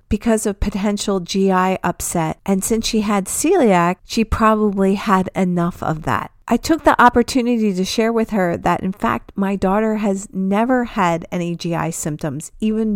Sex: female